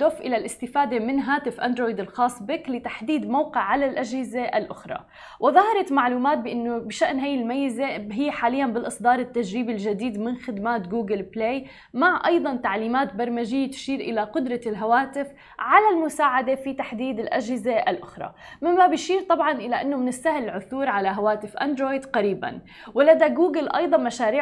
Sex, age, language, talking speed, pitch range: female, 20-39, Arabic, 140 wpm, 225-275 Hz